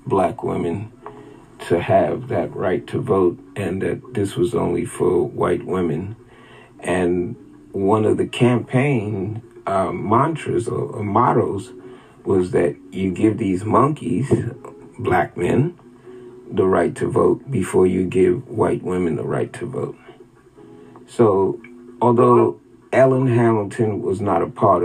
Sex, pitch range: male, 95-125 Hz